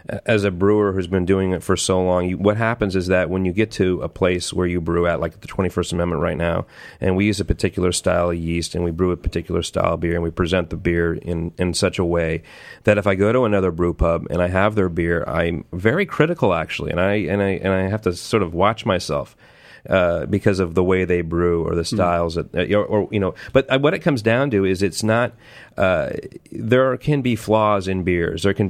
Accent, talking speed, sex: American, 245 wpm, male